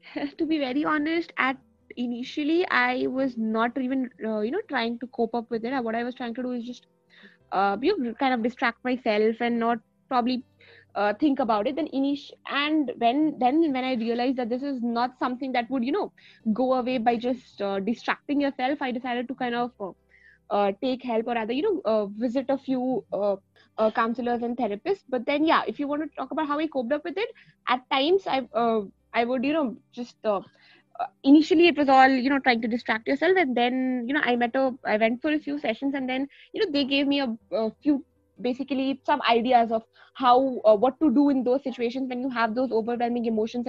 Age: 20-39